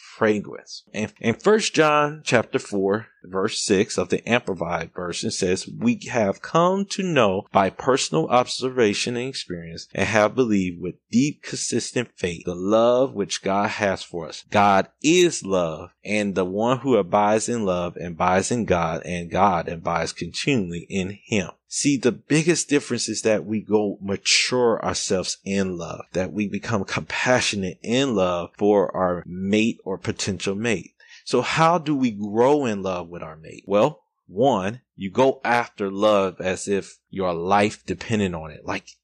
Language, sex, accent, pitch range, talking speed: English, male, American, 95-130 Hz, 165 wpm